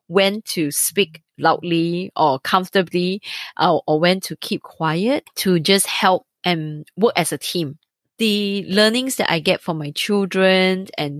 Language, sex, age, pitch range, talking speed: English, female, 20-39, 165-205 Hz, 155 wpm